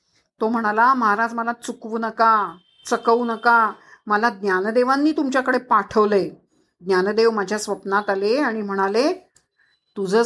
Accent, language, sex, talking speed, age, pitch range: native, Marathi, female, 110 wpm, 50-69, 205-275 Hz